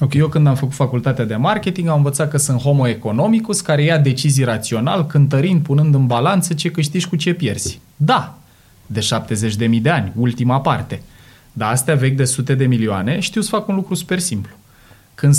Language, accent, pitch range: Romanian, native, 120-155 Hz